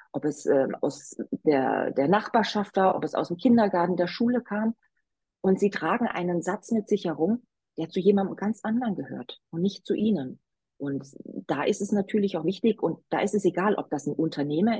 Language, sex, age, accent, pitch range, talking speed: German, female, 40-59, German, 165-220 Hz, 205 wpm